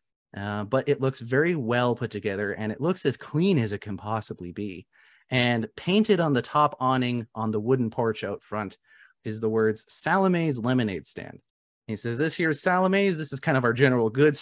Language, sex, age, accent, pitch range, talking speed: English, male, 30-49, American, 110-155 Hz, 205 wpm